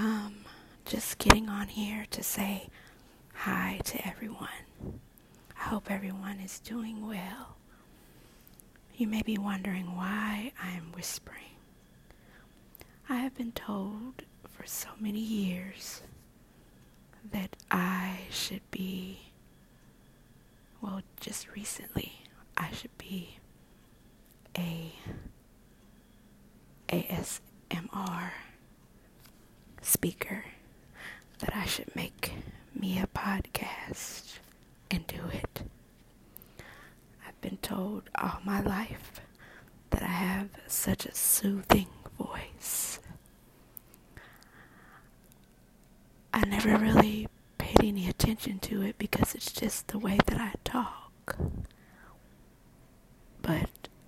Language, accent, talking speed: English, American, 95 wpm